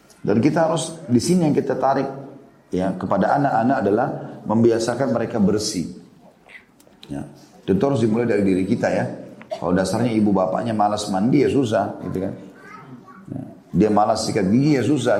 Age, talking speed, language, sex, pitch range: 30-49, 160 wpm, Indonesian, male, 100-125 Hz